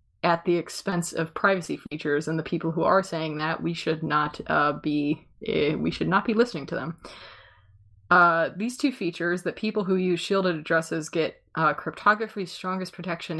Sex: female